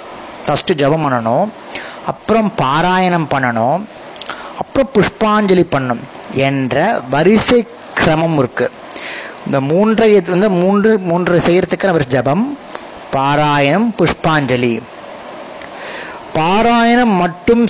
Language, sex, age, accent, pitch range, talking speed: Tamil, male, 30-49, native, 140-200 Hz, 80 wpm